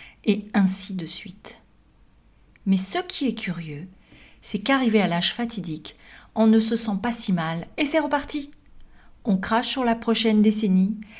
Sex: female